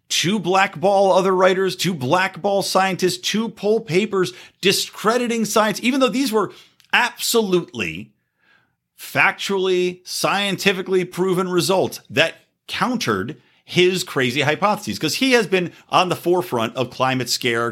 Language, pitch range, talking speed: English, 125-190 Hz, 120 wpm